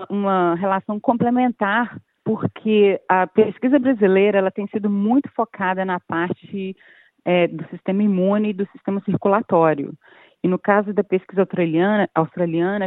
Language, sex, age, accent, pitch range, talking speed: Portuguese, female, 40-59, Brazilian, 170-205 Hz, 135 wpm